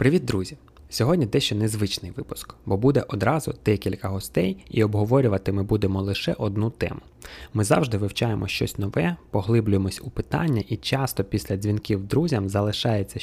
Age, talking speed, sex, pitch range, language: 20-39, 145 wpm, male, 100-125 Hz, Ukrainian